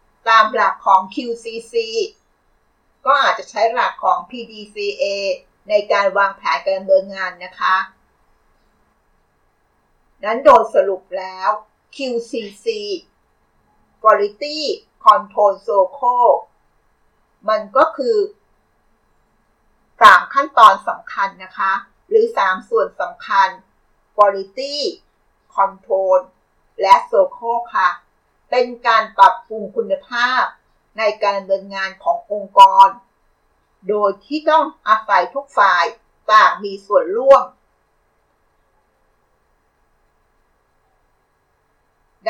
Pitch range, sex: 195-285 Hz, female